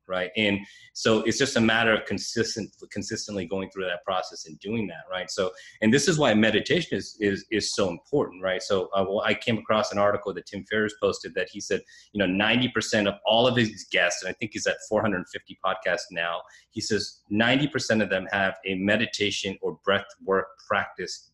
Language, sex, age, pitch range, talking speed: English, male, 30-49, 95-110 Hz, 205 wpm